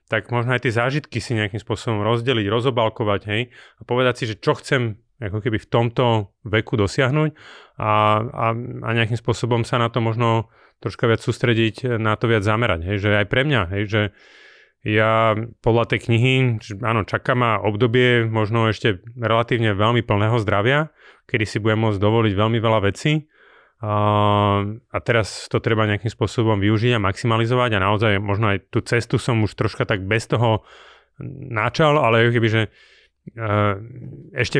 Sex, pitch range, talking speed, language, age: male, 105-120 Hz, 165 wpm, Slovak, 30-49